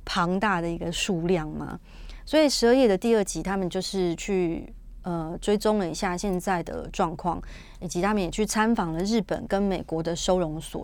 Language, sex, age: Chinese, female, 30-49